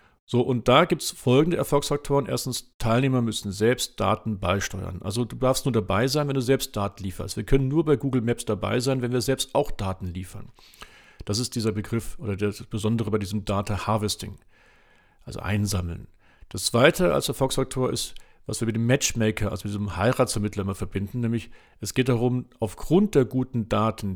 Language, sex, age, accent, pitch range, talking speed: German, male, 50-69, German, 105-130 Hz, 190 wpm